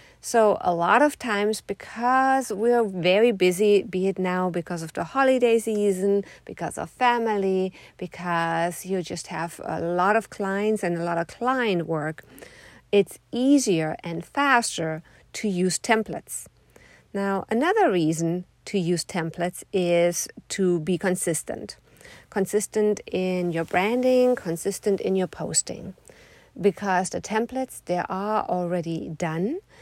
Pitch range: 175-210 Hz